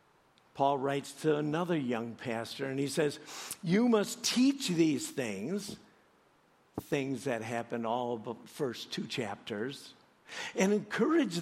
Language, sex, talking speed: English, male, 125 wpm